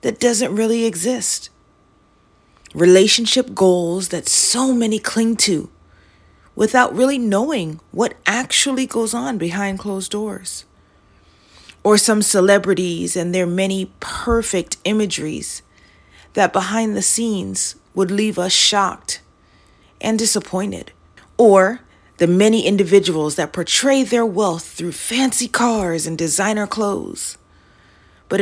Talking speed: 115 wpm